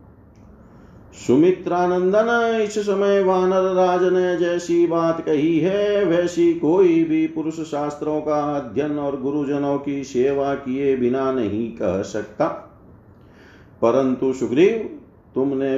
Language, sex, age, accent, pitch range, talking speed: Hindi, male, 50-69, native, 130-175 Hz, 110 wpm